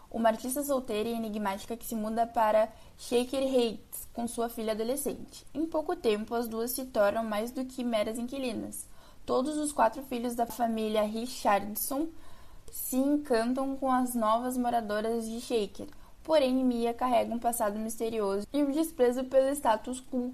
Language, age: Portuguese, 10-29